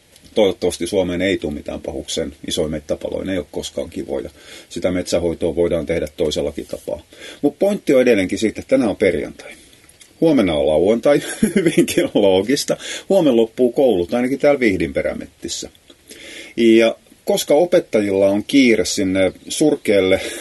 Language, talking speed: Finnish, 130 wpm